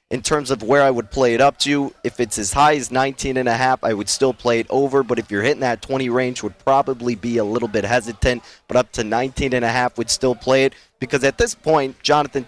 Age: 30-49